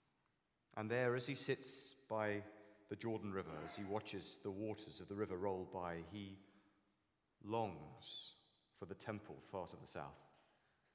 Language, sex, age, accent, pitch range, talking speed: English, male, 30-49, British, 85-110 Hz, 155 wpm